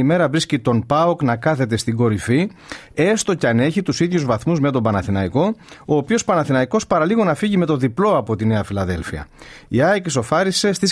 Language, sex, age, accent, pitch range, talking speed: Greek, male, 30-49, native, 110-160 Hz, 200 wpm